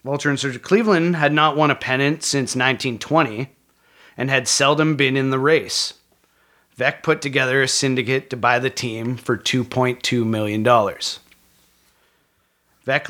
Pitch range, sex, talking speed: 125-140 Hz, male, 140 wpm